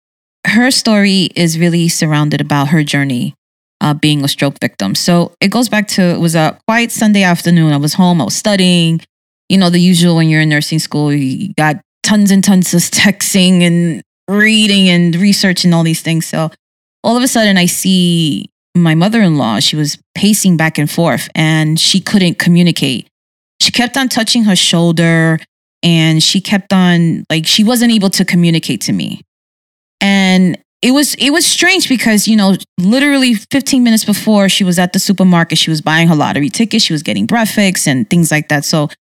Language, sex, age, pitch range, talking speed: English, female, 20-39, 165-210 Hz, 190 wpm